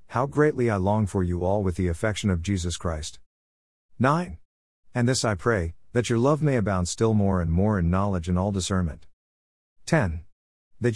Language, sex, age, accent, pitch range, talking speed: English, male, 50-69, American, 85-120 Hz, 185 wpm